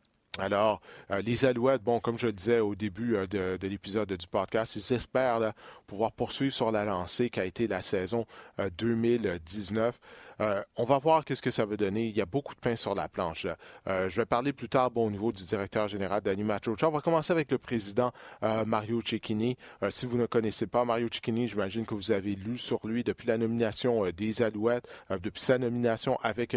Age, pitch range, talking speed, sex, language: 40-59, 100-120 Hz, 225 wpm, male, French